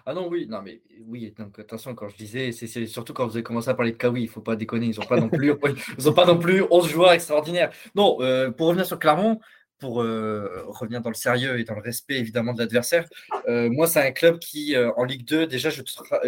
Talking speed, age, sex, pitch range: 250 wpm, 20-39, male, 120-160 Hz